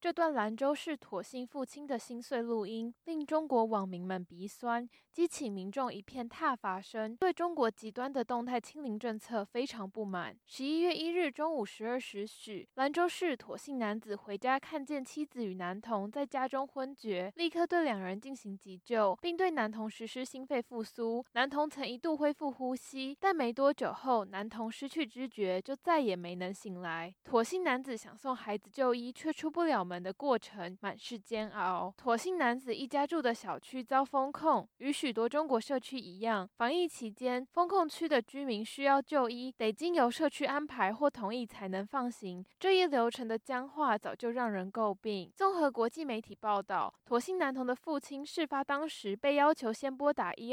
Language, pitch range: Chinese, 215-285 Hz